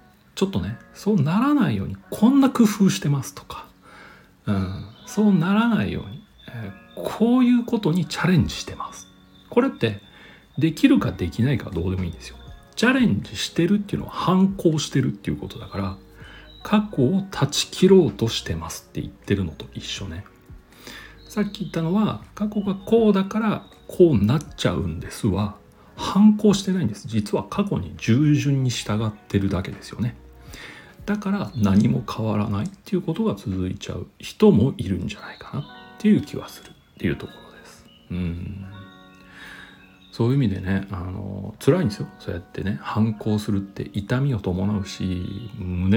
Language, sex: Japanese, male